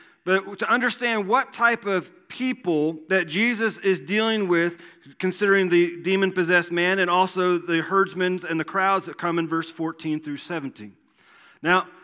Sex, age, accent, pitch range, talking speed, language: male, 40-59, American, 180-225 Hz, 155 wpm, English